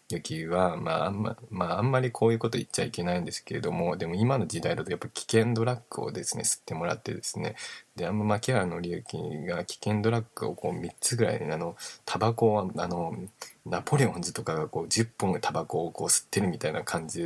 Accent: native